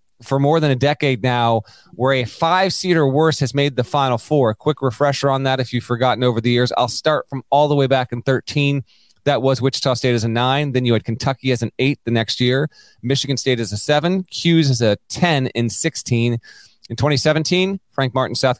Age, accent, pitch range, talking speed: 30-49, American, 115-135 Hz, 225 wpm